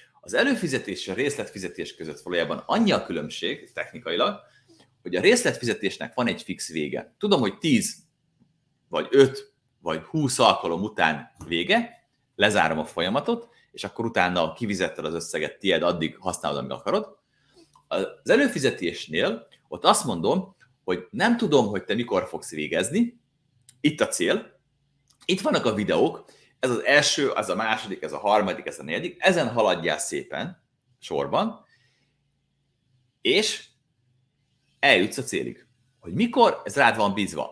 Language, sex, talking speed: Hungarian, male, 140 wpm